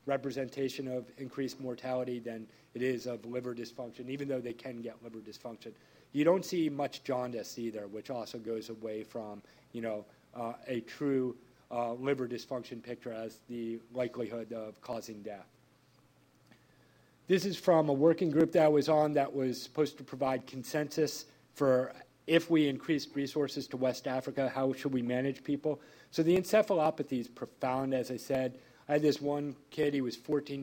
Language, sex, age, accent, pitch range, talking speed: English, male, 40-59, American, 120-140 Hz, 170 wpm